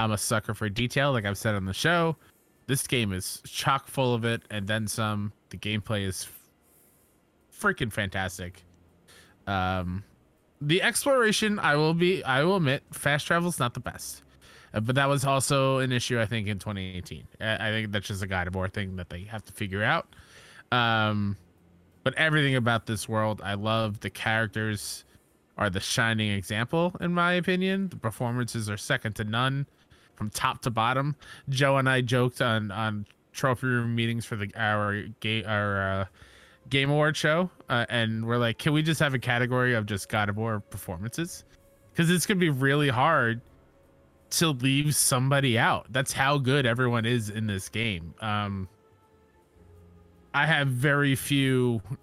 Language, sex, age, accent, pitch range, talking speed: English, male, 20-39, American, 100-135 Hz, 175 wpm